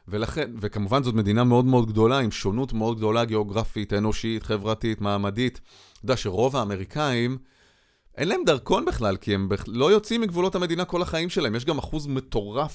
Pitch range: 100-135 Hz